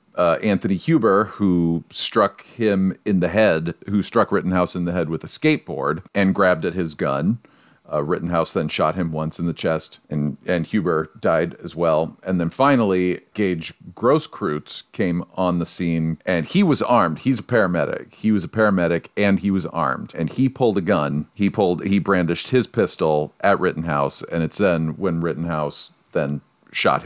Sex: male